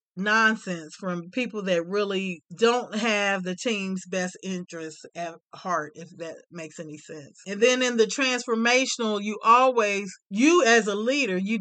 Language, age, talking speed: English, 40-59, 155 wpm